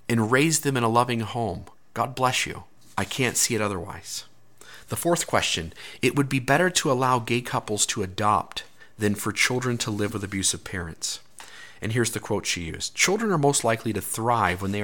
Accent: American